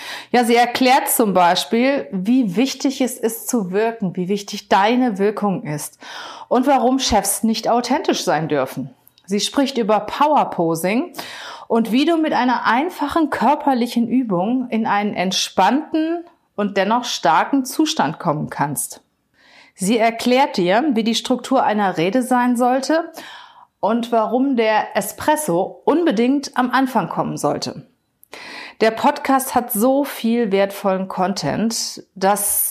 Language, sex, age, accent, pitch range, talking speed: German, female, 30-49, German, 190-255 Hz, 130 wpm